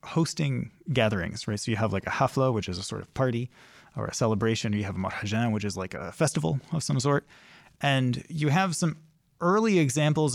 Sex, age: male, 30-49